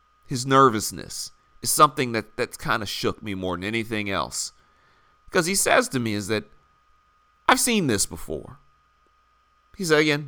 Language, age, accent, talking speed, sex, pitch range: English, 40-59, American, 160 wpm, male, 95-150 Hz